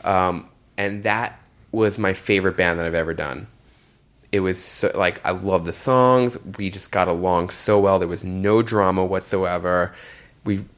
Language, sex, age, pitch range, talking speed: English, male, 20-39, 90-100 Hz, 175 wpm